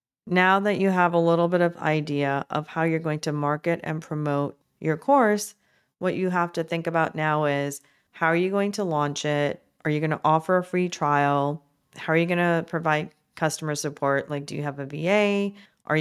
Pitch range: 150-175 Hz